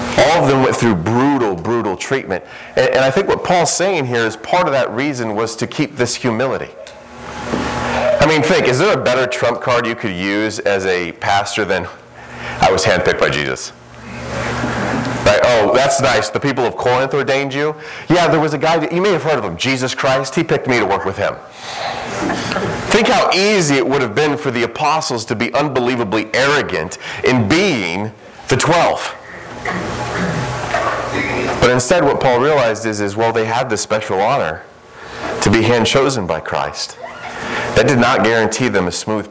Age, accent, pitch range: 30-49, American, 105-135 Hz